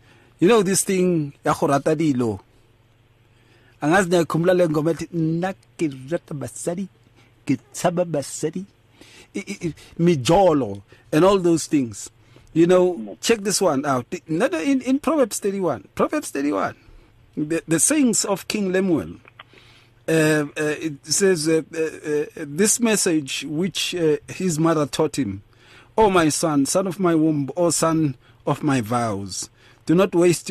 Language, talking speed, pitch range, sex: English, 115 wpm, 120-170 Hz, male